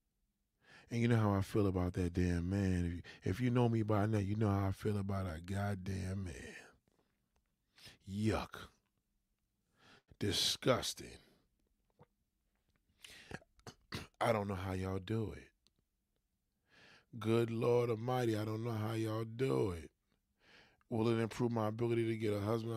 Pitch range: 95-115 Hz